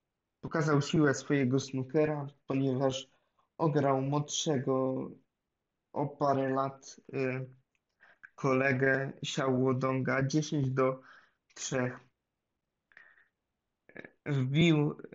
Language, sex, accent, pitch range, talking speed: Polish, male, native, 130-150 Hz, 65 wpm